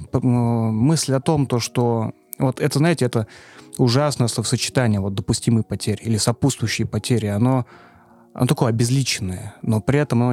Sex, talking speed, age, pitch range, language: male, 145 wpm, 20-39, 105-125 Hz, Russian